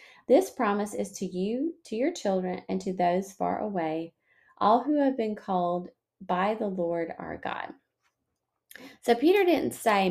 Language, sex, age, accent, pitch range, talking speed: English, female, 30-49, American, 180-250 Hz, 160 wpm